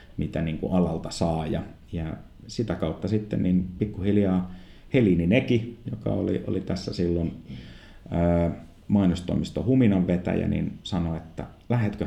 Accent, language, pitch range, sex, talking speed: native, Finnish, 80-95 Hz, male, 130 wpm